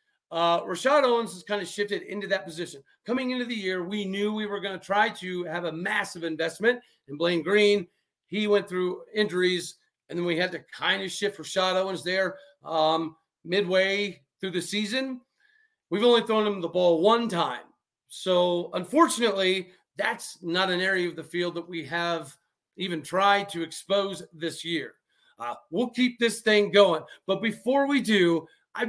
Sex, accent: male, American